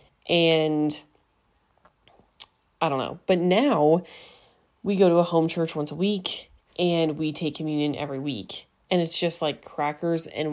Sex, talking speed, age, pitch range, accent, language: female, 155 wpm, 30-49, 145-170 Hz, American, English